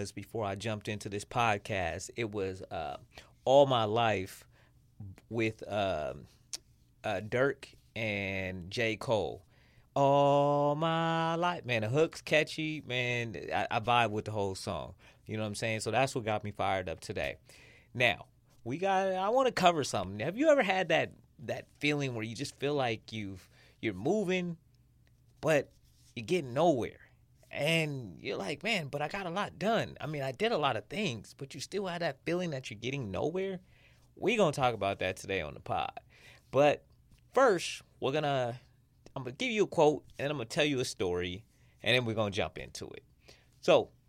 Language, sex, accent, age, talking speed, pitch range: English, male, American, 30-49, 190 wpm, 110-155 Hz